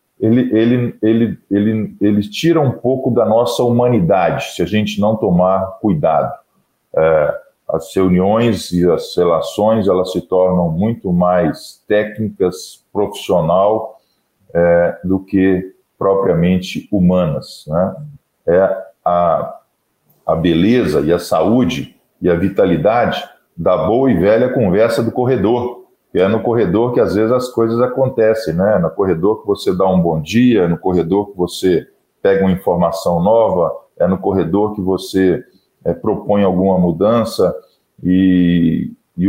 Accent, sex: Brazilian, male